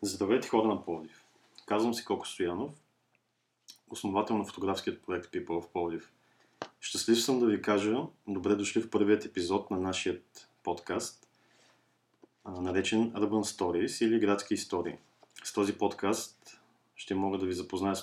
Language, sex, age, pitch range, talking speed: Bulgarian, male, 30-49, 95-110 Hz, 145 wpm